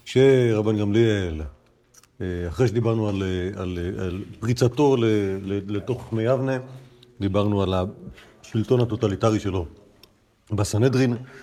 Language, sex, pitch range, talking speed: Hebrew, male, 100-130 Hz, 90 wpm